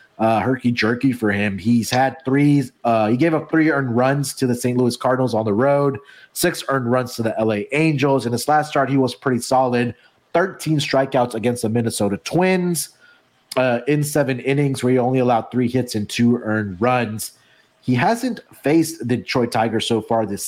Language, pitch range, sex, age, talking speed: English, 115-145 Hz, male, 30-49, 200 wpm